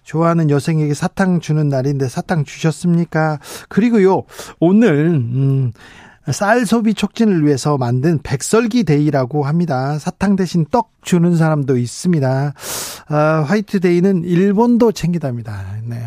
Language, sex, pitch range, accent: Korean, male, 140-185 Hz, native